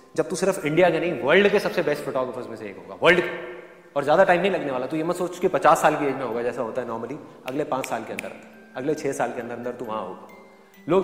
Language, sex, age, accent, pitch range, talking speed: Hindi, male, 30-49, native, 160-230 Hz, 265 wpm